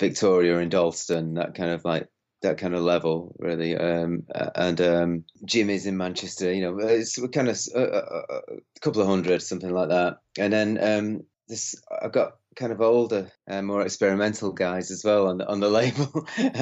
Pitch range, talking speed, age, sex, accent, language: 90-105 Hz, 185 wpm, 30-49, male, British, English